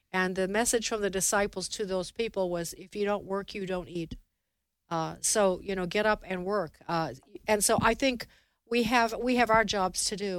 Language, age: English, 50-69